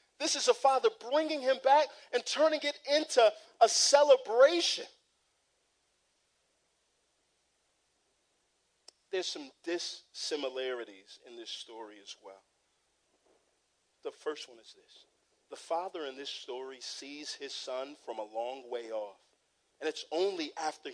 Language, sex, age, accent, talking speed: English, male, 40-59, American, 125 wpm